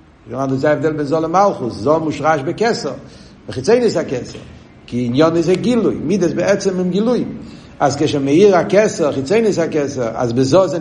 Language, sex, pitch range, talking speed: Hebrew, male, 130-170 Hz, 155 wpm